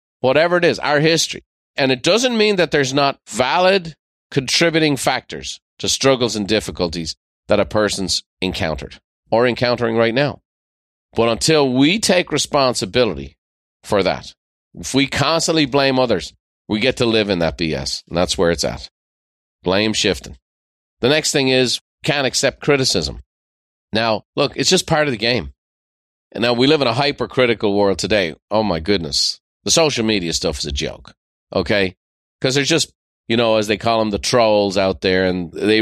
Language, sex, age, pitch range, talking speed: English, male, 40-59, 85-130 Hz, 175 wpm